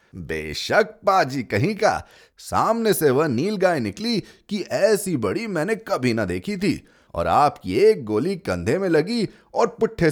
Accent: native